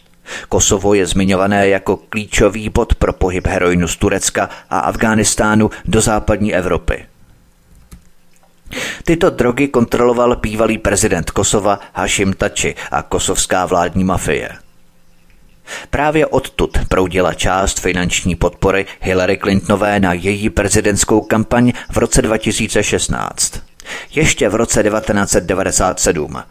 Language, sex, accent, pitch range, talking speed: Czech, male, native, 90-110 Hz, 105 wpm